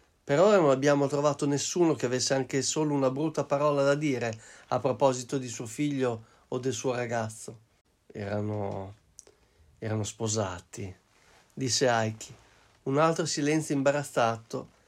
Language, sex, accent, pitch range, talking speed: Italian, male, native, 120-150 Hz, 135 wpm